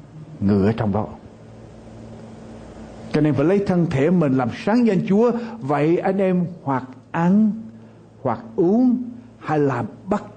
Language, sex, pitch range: Vietnamese, male, 120-180 Hz